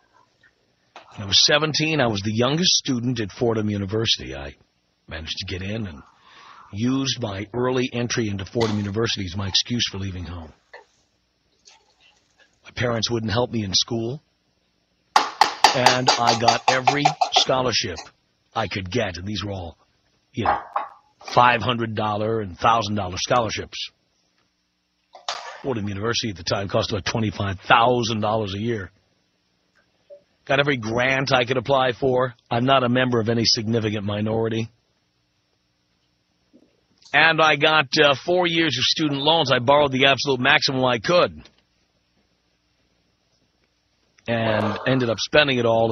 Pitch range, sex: 100-130 Hz, male